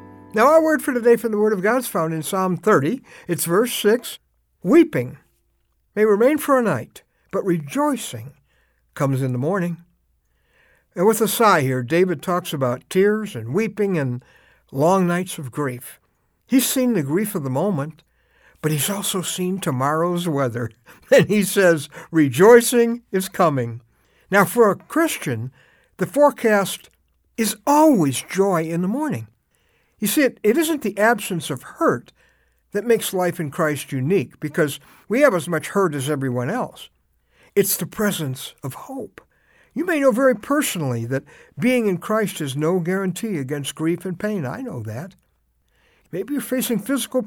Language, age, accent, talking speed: English, 60-79, American, 165 wpm